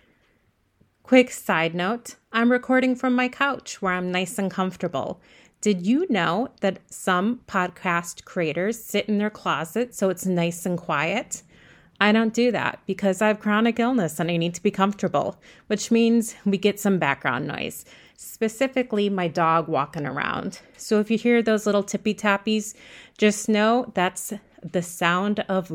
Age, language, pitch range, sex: 30-49, English, 185-235 Hz, female